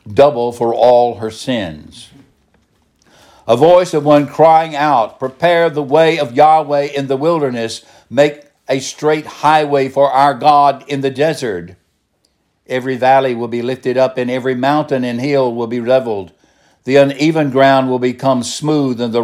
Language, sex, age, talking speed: English, male, 60-79, 160 wpm